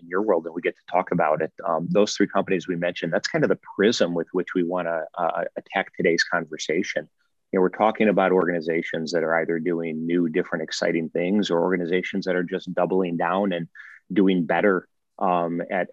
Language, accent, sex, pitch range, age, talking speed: English, American, male, 85-105 Hz, 30-49, 205 wpm